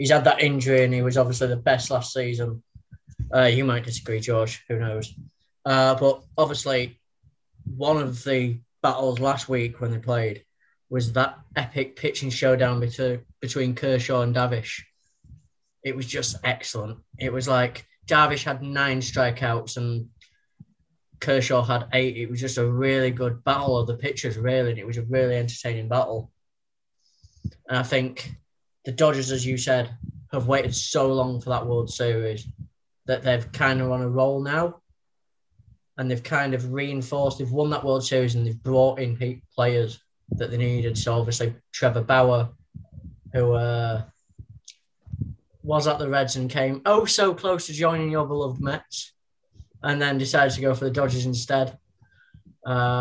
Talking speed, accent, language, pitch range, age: 165 wpm, British, English, 120-135 Hz, 10-29